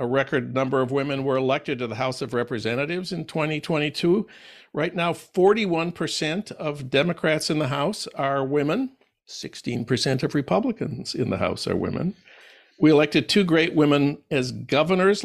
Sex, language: male, English